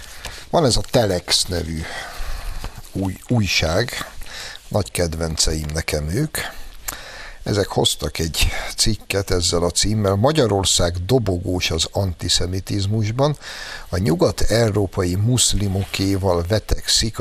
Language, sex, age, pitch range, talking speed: Hungarian, male, 60-79, 85-105 Hz, 90 wpm